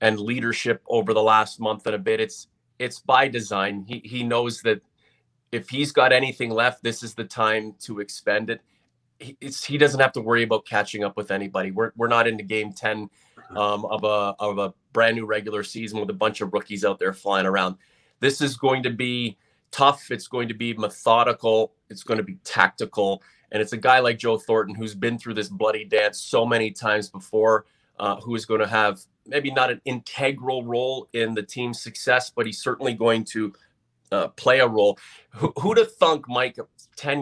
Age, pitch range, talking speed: 30-49, 105-125 Hz, 205 wpm